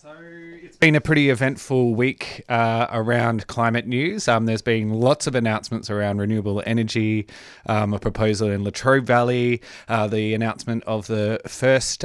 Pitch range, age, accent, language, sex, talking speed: 115-150 Hz, 20-39, Australian, English, male, 160 wpm